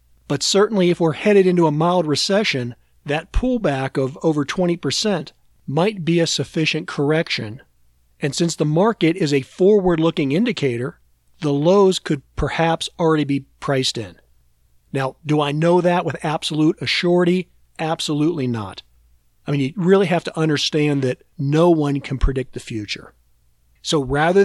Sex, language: male, English